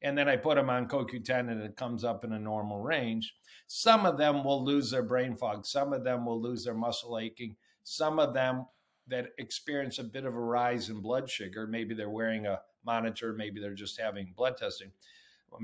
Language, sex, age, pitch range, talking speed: English, male, 50-69, 105-125 Hz, 215 wpm